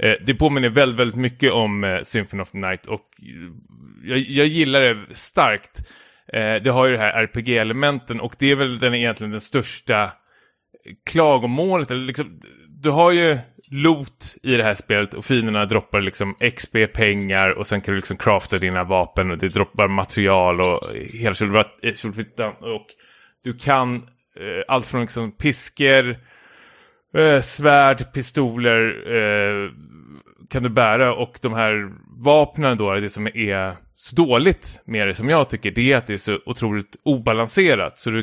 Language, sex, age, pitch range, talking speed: Swedish, male, 30-49, 100-130 Hz, 150 wpm